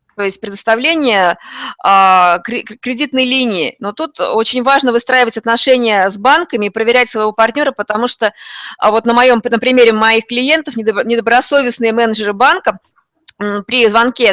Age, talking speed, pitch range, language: 20-39, 130 wpm, 215-265 Hz, Russian